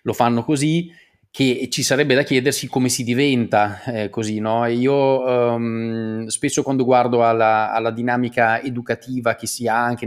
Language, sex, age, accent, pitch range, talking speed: Italian, male, 20-39, native, 110-130 Hz, 160 wpm